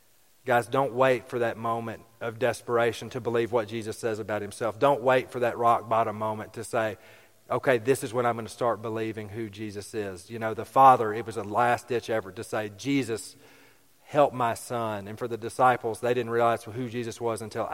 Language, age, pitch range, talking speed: English, 40-59, 105-120 Hz, 215 wpm